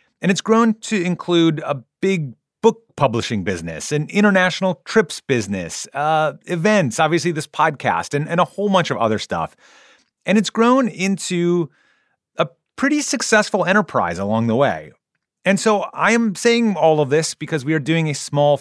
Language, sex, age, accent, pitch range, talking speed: English, male, 30-49, American, 120-180 Hz, 170 wpm